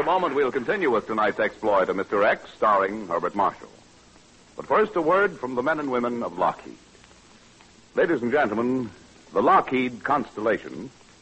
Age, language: 60-79, English